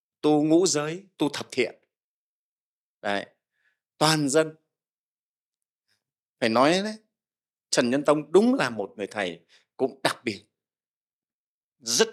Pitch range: 115-170 Hz